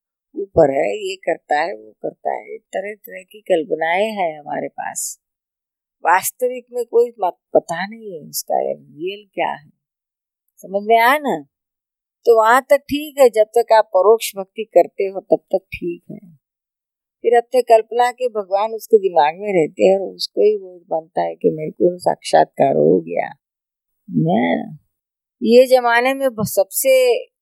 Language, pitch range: Hindi, 185-245 Hz